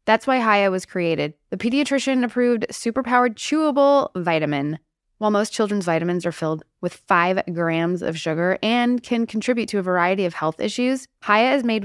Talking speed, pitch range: 175 wpm, 170-235 Hz